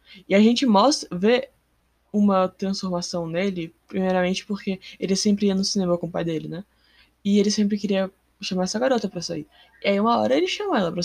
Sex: female